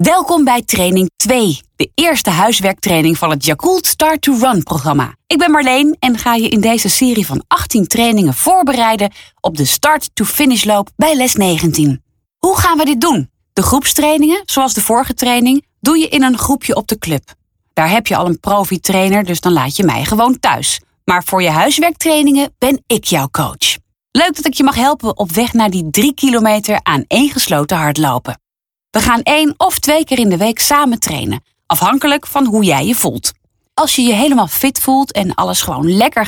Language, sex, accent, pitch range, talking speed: Dutch, female, Dutch, 185-275 Hz, 195 wpm